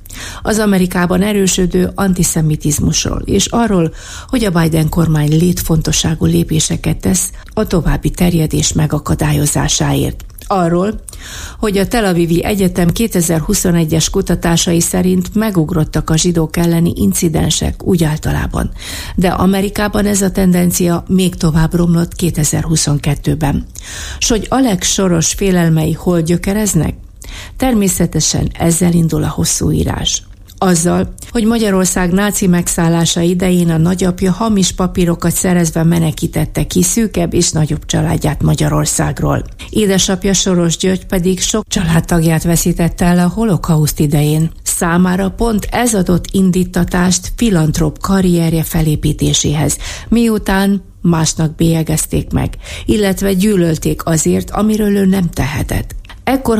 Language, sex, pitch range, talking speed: Hungarian, female, 160-190 Hz, 110 wpm